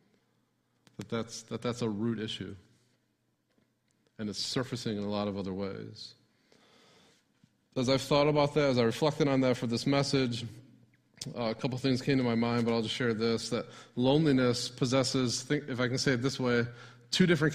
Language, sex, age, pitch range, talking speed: English, male, 30-49, 115-140 Hz, 180 wpm